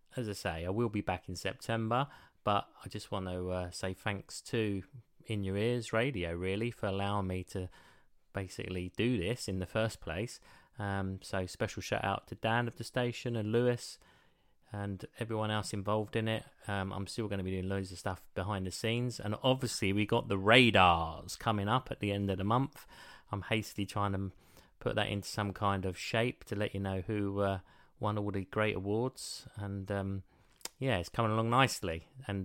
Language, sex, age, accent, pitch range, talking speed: English, male, 30-49, British, 95-115 Hz, 200 wpm